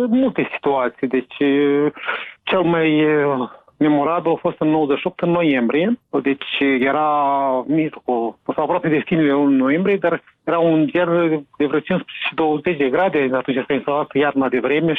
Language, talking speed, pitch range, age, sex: Romanian, 145 wpm, 140-170 Hz, 30-49, male